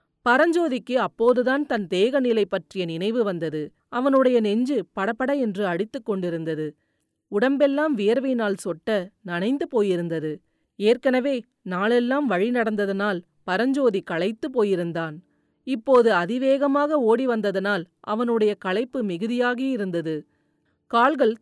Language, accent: Tamil, native